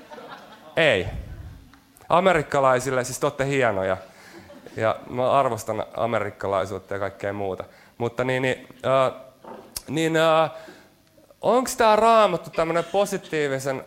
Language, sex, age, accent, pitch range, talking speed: Finnish, male, 30-49, native, 115-165 Hz, 80 wpm